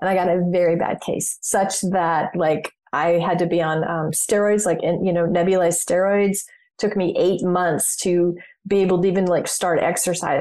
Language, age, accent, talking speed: English, 30-49, American, 210 wpm